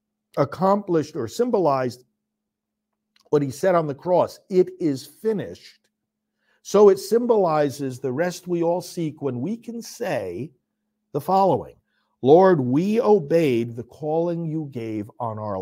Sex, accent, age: male, American, 50-69